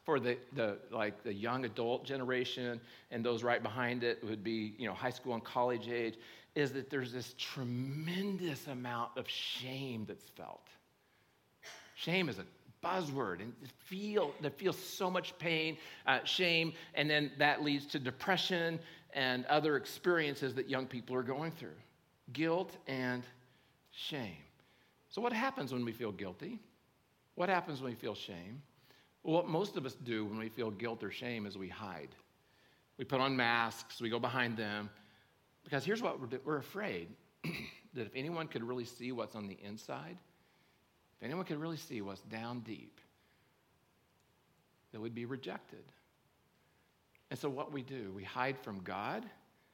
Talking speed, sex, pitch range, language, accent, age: 165 wpm, male, 115-150 Hz, English, American, 50-69